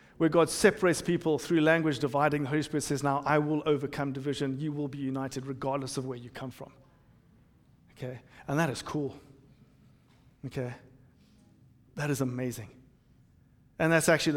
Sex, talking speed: male, 160 wpm